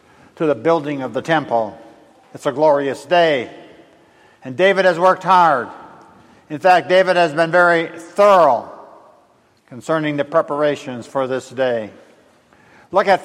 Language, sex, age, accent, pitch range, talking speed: English, male, 60-79, American, 140-175 Hz, 135 wpm